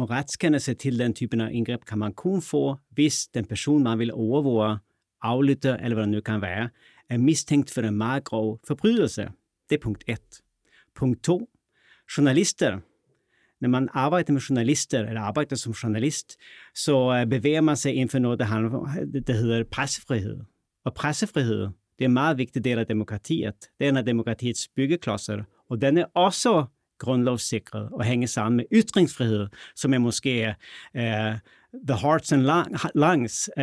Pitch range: 115-145 Hz